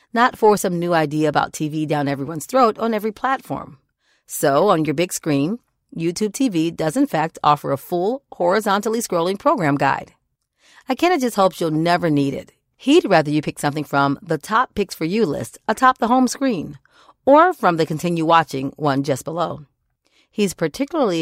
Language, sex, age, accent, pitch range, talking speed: English, female, 40-59, American, 155-240 Hz, 185 wpm